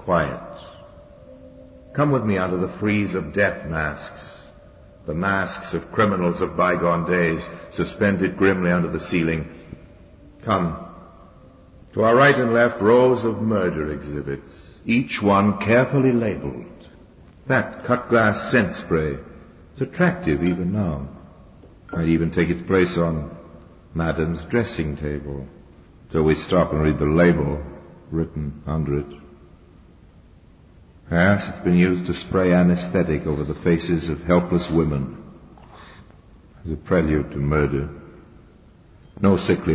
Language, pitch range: English, 80-100 Hz